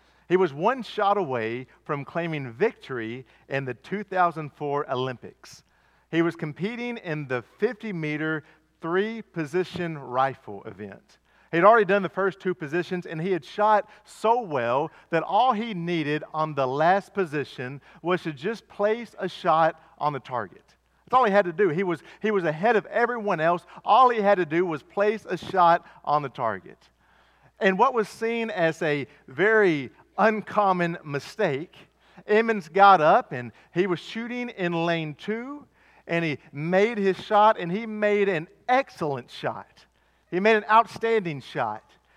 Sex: male